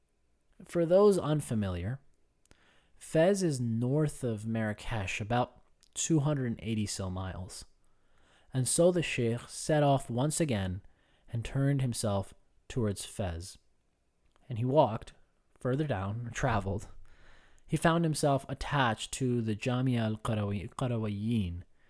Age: 20-39